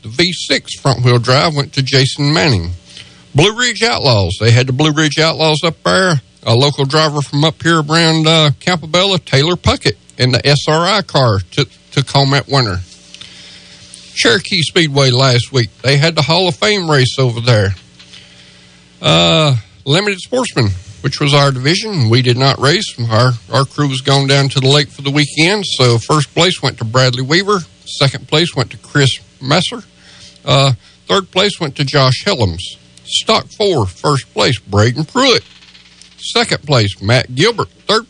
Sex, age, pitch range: male, 50-69, 105-160 Hz